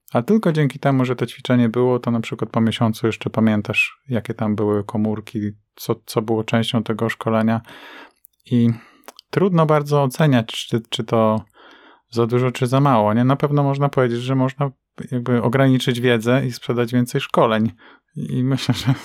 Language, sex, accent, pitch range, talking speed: Polish, male, native, 110-130 Hz, 170 wpm